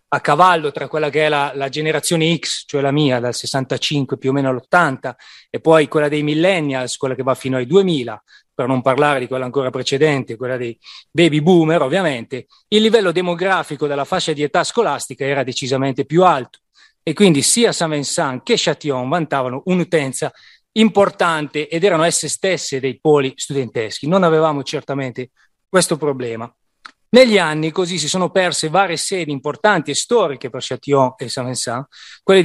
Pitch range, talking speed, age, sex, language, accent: 135-170 Hz, 170 wpm, 30-49, male, Italian, native